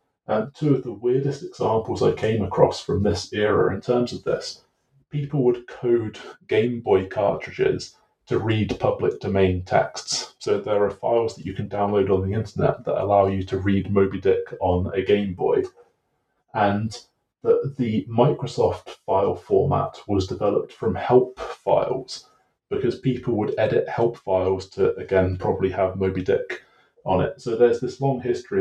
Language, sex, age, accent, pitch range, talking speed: English, male, 30-49, British, 95-125 Hz, 165 wpm